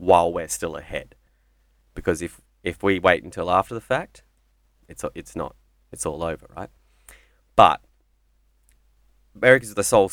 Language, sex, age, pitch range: English, male, 30-49, 75-100 Hz